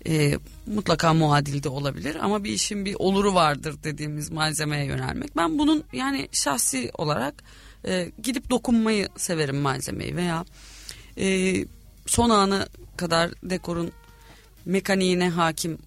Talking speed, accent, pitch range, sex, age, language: 120 wpm, native, 150-200 Hz, female, 40-59, Turkish